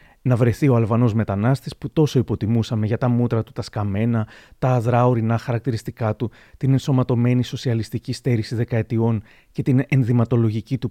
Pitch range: 110-140 Hz